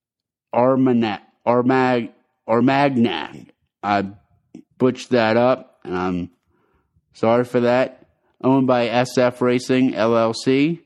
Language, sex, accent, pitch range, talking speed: English, male, American, 115-130 Hz, 90 wpm